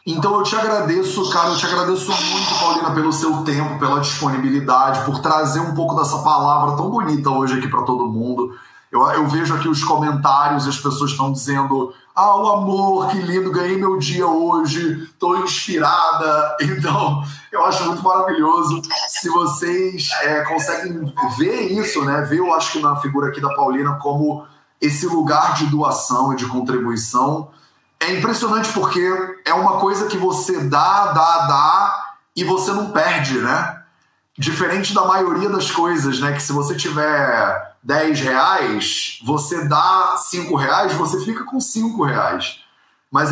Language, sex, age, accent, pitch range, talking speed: Portuguese, male, 20-39, Brazilian, 145-190 Hz, 160 wpm